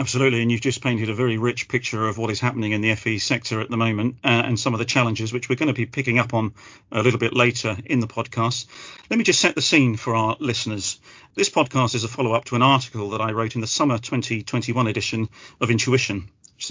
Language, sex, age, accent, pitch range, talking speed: English, male, 40-59, British, 115-135 Hz, 250 wpm